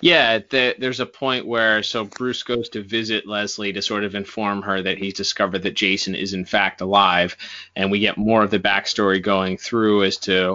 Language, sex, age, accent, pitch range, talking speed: English, male, 20-39, American, 95-115 Hz, 210 wpm